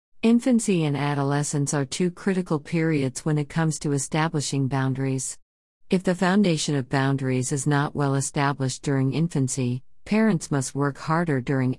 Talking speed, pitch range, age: 150 wpm, 135-160 Hz, 50-69